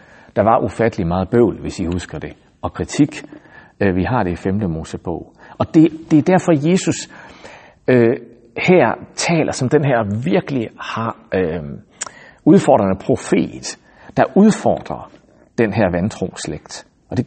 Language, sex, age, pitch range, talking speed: Danish, male, 60-79, 110-155 Hz, 150 wpm